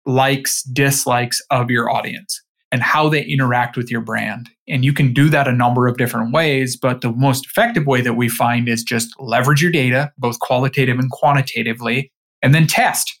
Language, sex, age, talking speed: English, male, 20-39, 190 wpm